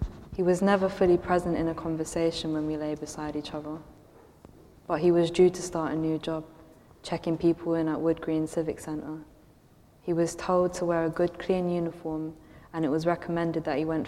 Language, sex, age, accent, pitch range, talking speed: English, female, 20-39, British, 155-170 Hz, 200 wpm